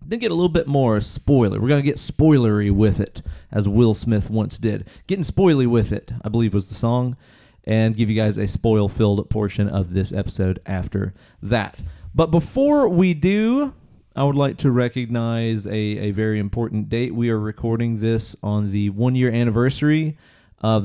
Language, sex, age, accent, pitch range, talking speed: English, male, 30-49, American, 100-120 Hz, 180 wpm